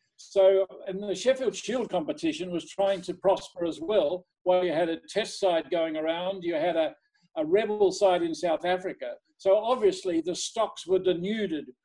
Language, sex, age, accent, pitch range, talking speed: English, male, 50-69, Australian, 180-225 Hz, 180 wpm